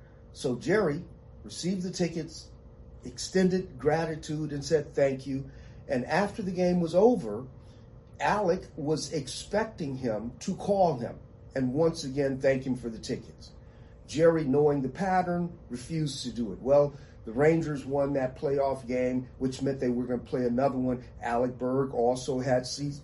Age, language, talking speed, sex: 40-59, English, 160 wpm, male